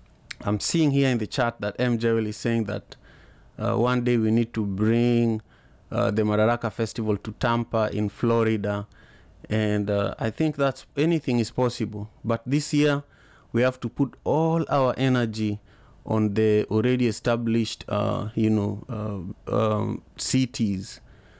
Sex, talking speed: male, 150 wpm